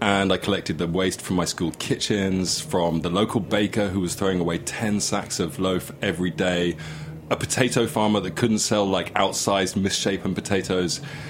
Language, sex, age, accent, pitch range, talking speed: English, male, 30-49, British, 85-120 Hz, 175 wpm